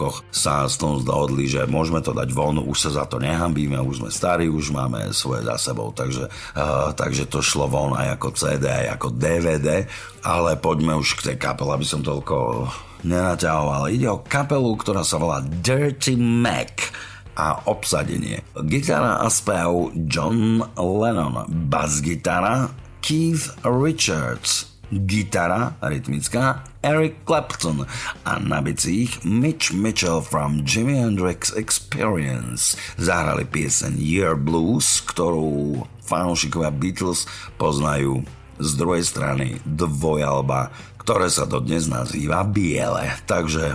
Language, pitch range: Slovak, 75-105 Hz